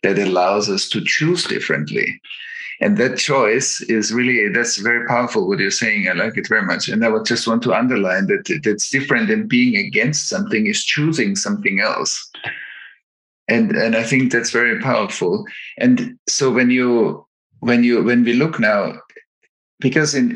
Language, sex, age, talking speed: English, male, 50-69, 175 wpm